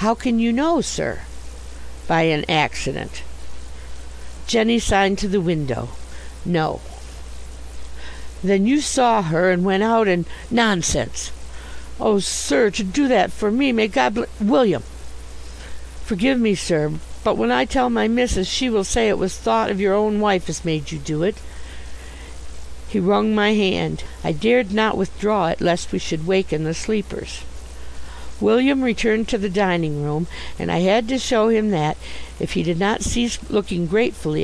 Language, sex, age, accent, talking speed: English, female, 60-79, American, 160 wpm